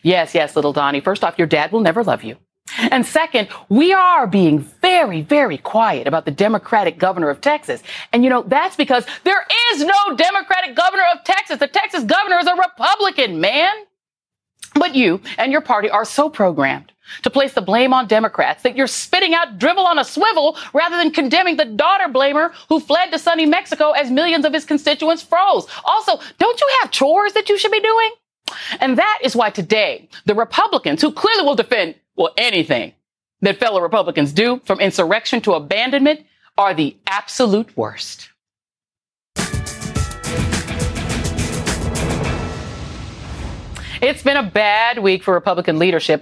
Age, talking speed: 40-59, 165 wpm